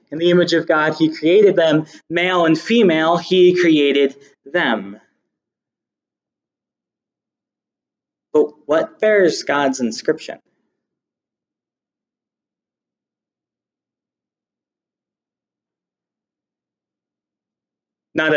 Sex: male